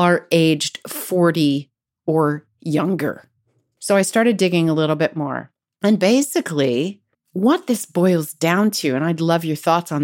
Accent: American